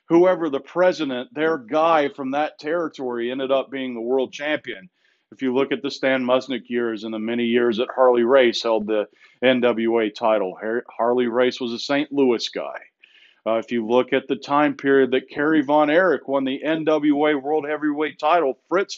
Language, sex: English, male